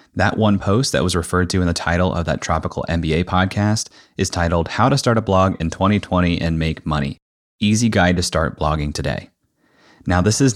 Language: English